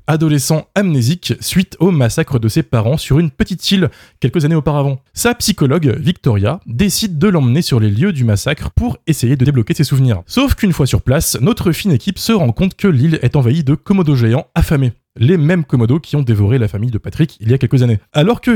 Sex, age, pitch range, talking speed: male, 20-39, 120-175 Hz, 220 wpm